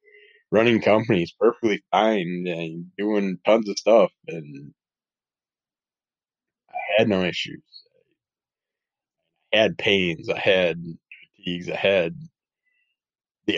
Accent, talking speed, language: American, 100 wpm, English